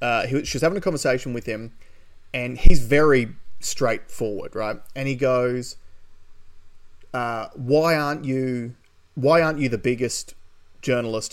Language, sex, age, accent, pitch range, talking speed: English, male, 30-49, Australian, 110-145 Hz, 130 wpm